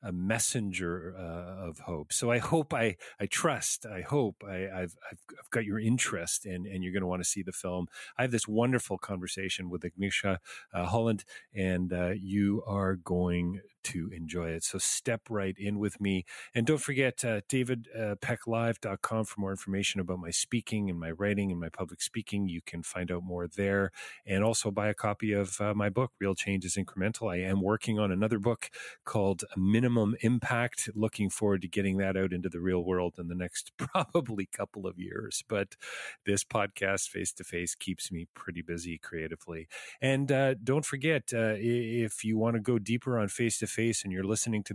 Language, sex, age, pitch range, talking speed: English, male, 40-59, 95-115 Hz, 190 wpm